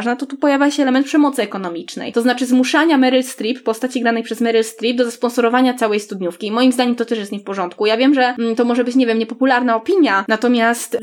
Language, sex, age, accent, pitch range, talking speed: Polish, female, 20-39, native, 225-260 Hz, 230 wpm